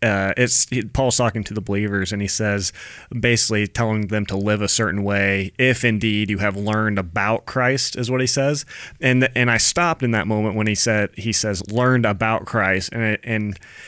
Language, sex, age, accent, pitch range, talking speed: English, male, 30-49, American, 105-120 Hz, 205 wpm